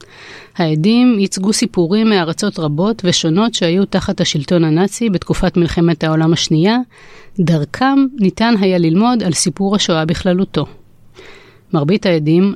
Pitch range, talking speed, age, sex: 160-200 Hz, 115 wpm, 30-49, female